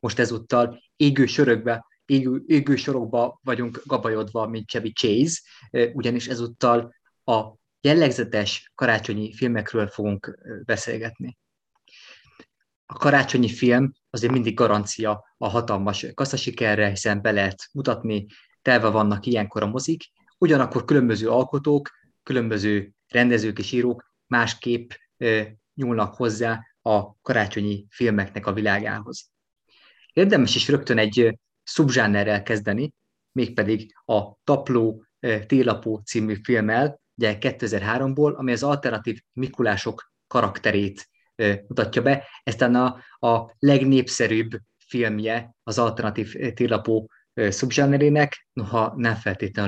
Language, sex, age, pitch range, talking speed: Hungarian, male, 20-39, 105-125 Hz, 100 wpm